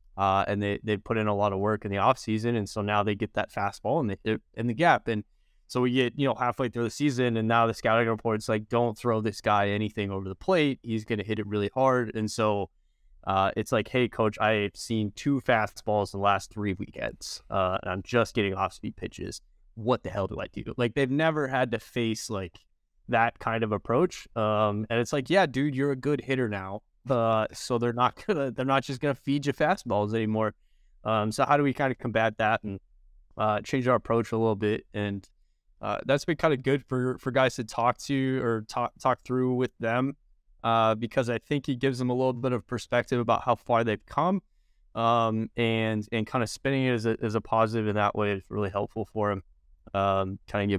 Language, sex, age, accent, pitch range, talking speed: English, male, 20-39, American, 105-125 Hz, 230 wpm